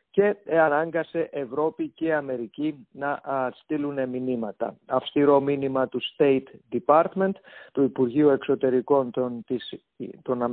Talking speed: 110 wpm